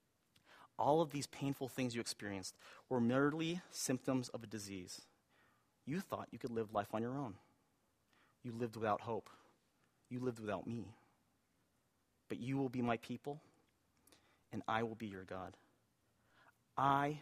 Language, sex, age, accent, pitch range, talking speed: English, male, 30-49, American, 115-175 Hz, 150 wpm